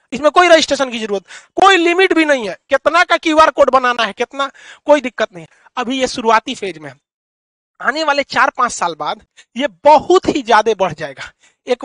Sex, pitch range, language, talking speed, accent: male, 225-290 Hz, Hindi, 95 wpm, native